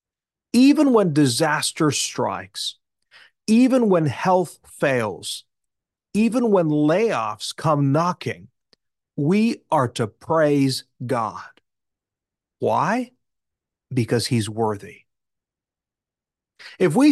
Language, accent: English, American